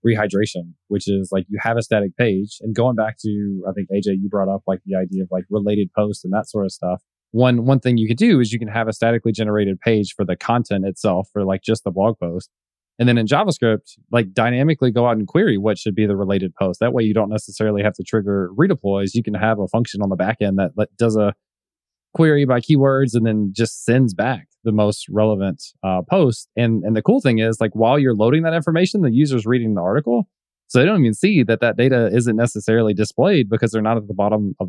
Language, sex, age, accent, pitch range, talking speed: English, male, 20-39, American, 100-120 Hz, 240 wpm